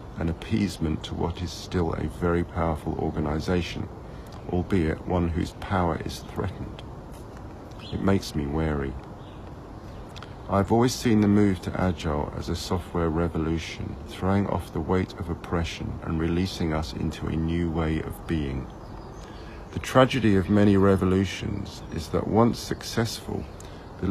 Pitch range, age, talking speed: 80-100 Hz, 50-69, 140 wpm